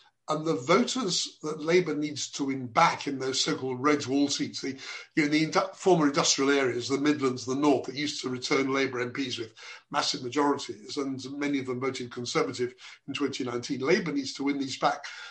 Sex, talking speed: male, 190 wpm